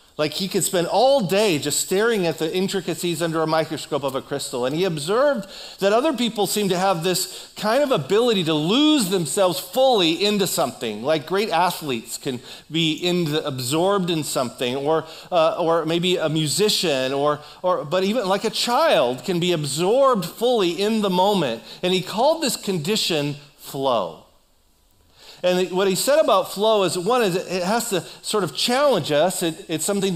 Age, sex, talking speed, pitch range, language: 40-59, male, 175 wpm, 150-200 Hz, English